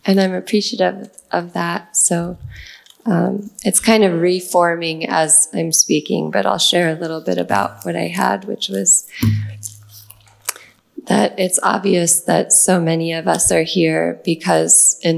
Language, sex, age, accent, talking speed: Gujarati, female, 20-39, American, 150 wpm